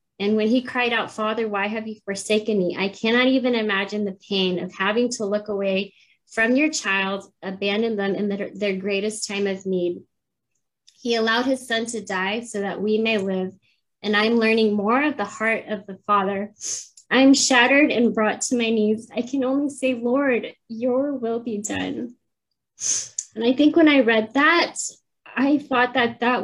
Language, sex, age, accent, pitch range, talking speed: English, female, 20-39, American, 205-245 Hz, 185 wpm